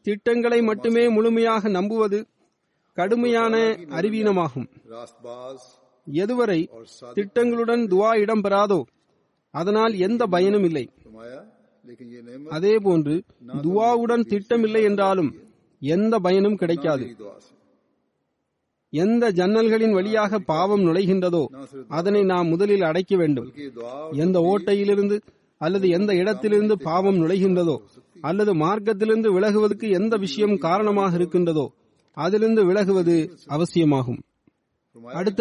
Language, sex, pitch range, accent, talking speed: Tamil, male, 165-220 Hz, native, 80 wpm